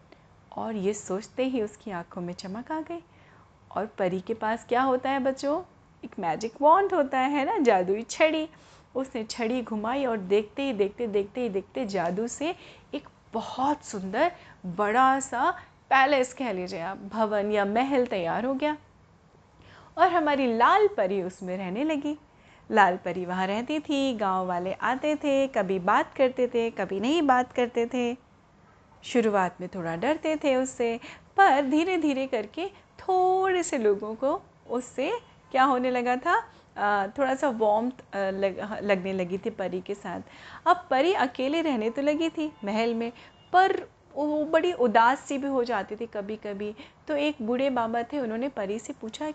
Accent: native